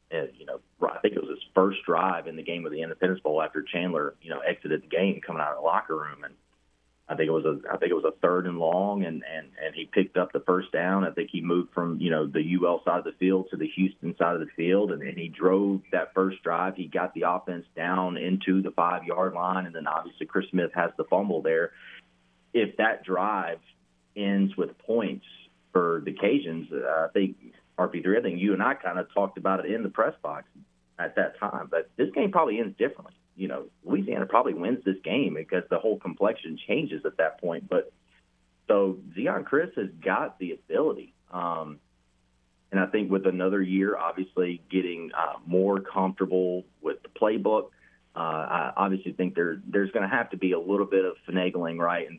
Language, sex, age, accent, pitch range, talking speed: English, male, 30-49, American, 85-95 Hz, 220 wpm